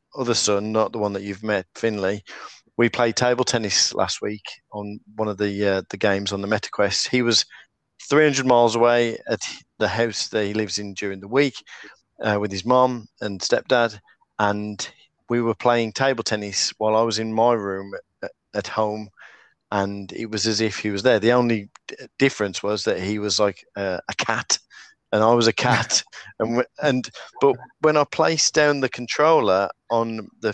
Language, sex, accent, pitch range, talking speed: English, male, British, 105-120 Hz, 190 wpm